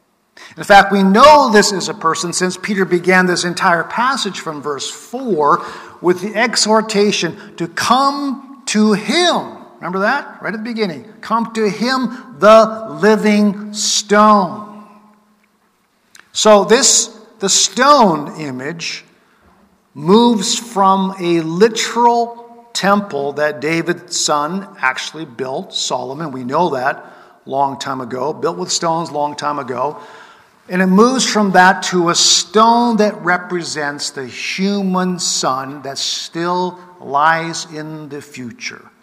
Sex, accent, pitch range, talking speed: male, American, 160-220 Hz, 130 wpm